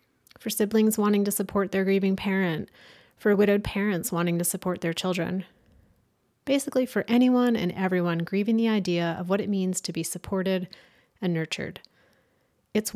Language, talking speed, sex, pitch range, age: English, 155 wpm, female, 175-210 Hz, 30-49